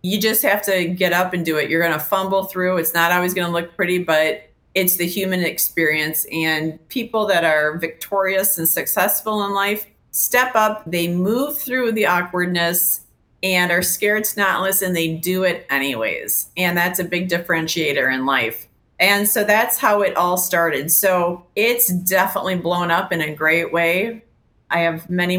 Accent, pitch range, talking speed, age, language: American, 165-195 Hz, 180 wpm, 40-59, English